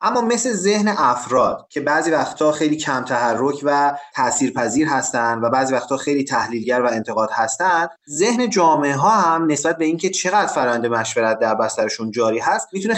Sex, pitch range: male, 130-185 Hz